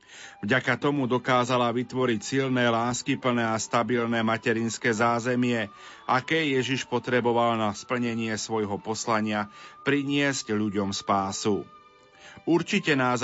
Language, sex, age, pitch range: Slovak, male, 30-49, 115-130 Hz